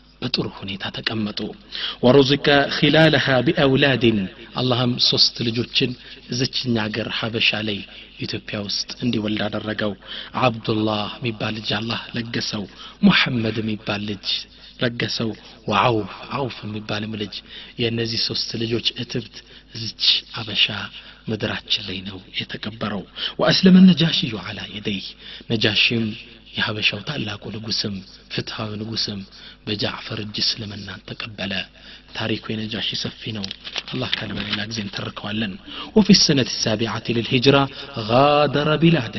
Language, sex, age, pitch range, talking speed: Amharic, male, 30-49, 110-130 Hz, 95 wpm